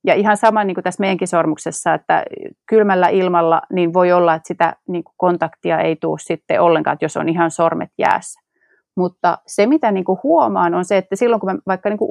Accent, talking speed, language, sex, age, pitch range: native, 220 wpm, Finnish, female, 30-49, 175-210 Hz